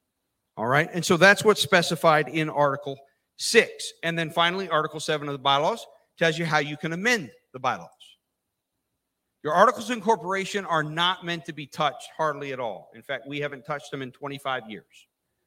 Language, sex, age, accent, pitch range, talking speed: English, male, 50-69, American, 135-170 Hz, 185 wpm